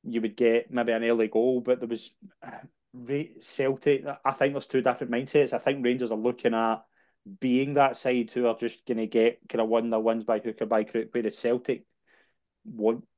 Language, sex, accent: English, male, British